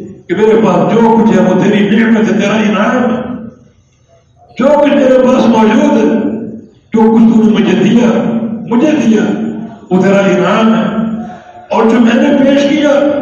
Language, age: English, 60-79